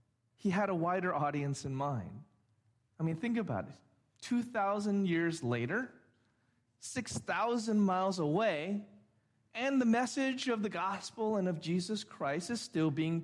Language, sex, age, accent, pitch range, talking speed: English, male, 40-59, American, 130-215 Hz, 140 wpm